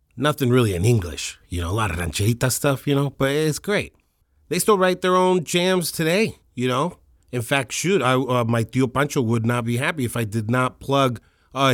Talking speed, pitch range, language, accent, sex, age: 220 wpm, 110-150 Hz, English, American, male, 30-49